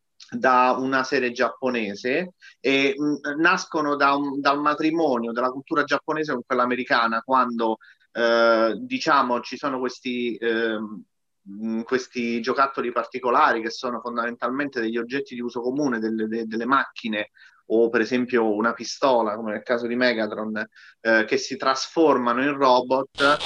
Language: Italian